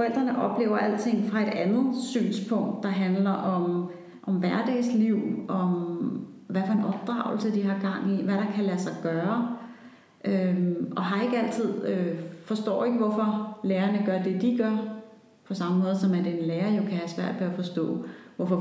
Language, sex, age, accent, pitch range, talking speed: Danish, female, 30-49, native, 180-220 Hz, 170 wpm